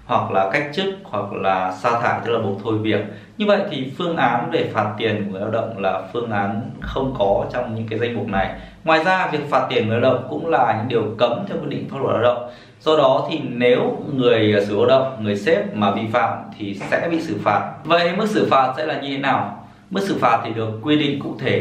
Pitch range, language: 105-135 Hz, Vietnamese